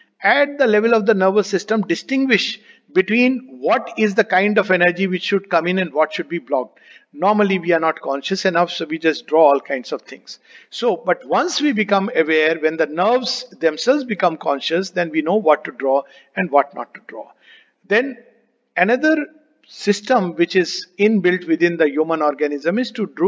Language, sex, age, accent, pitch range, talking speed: English, male, 60-79, Indian, 165-225 Hz, 190 wpm